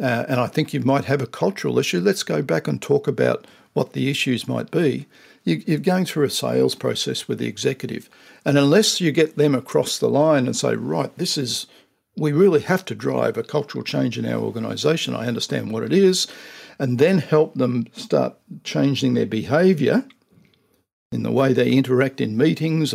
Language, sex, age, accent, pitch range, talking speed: English, male, 60-79, Australian, 125-155 Hz, 195 wpm